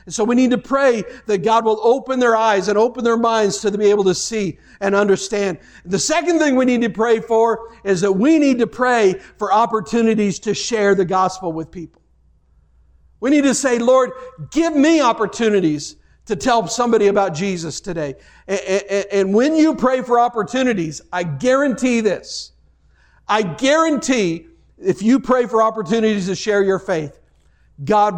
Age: 50-69